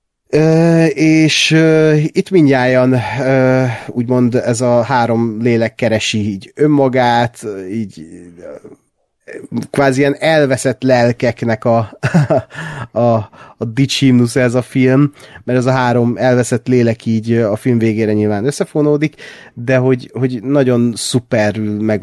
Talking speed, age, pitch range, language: 120 wpm, 30-49, 105-130 Hz, Hungarian